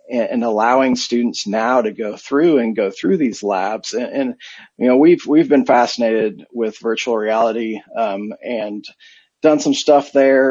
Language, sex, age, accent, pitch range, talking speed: English, male, 40-59, American, 110-135 Hz, 165 wpm